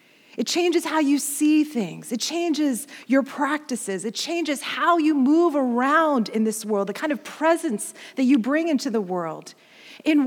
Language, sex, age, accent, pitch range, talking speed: English, female, 40-59, American, 225-305 Hz, 175 wpm